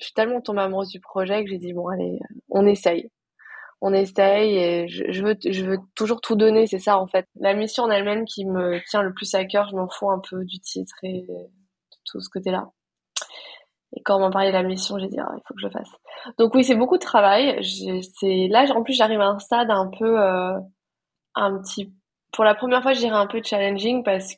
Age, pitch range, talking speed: 20-39, 185-215 Hz, 240 wpm